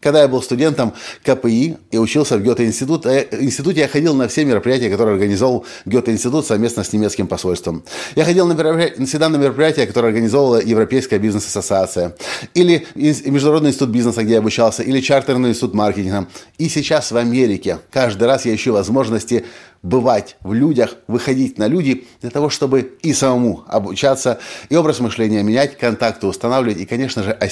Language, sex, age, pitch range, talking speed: Russian, male, 30-49, 105-135 Hz, 160 wpm